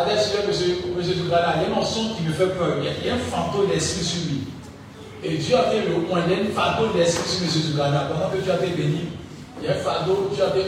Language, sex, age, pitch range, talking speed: French, male, 50-69, 145-180 Hz, 310 wpm